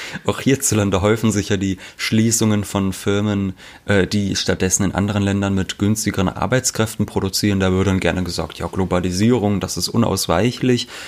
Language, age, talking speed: German, 30-49, 145 wpm